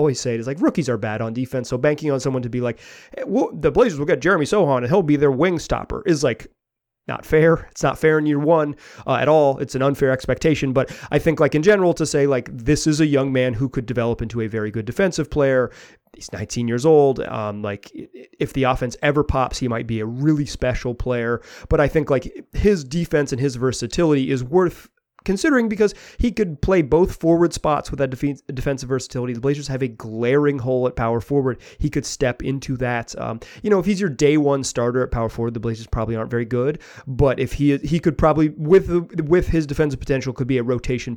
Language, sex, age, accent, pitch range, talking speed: English, male, 30-49, American, 120-155 Hz, 230 wpm